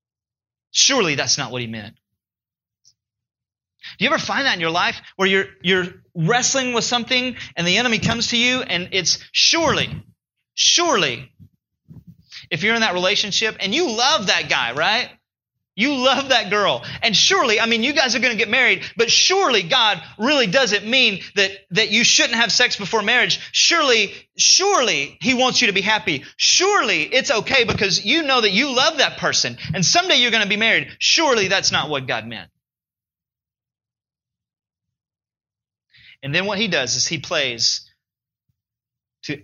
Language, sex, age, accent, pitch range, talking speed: English, male, 30-49, American, 140-230 Hz, 170 wpm